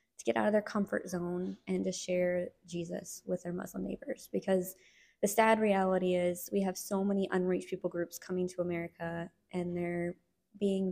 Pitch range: 175-195 Hz